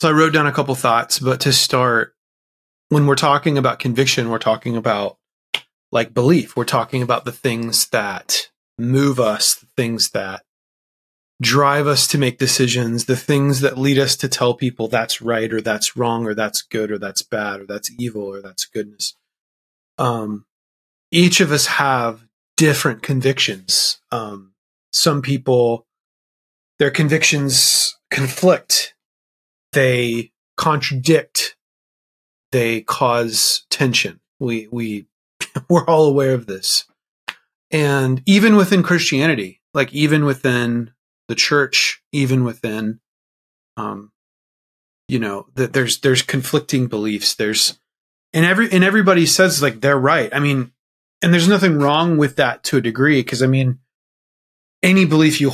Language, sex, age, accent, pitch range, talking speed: English, male, 30-49, American, 115-145 Hz, 140 wpm